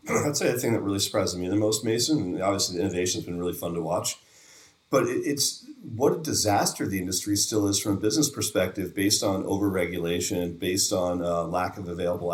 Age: 40-59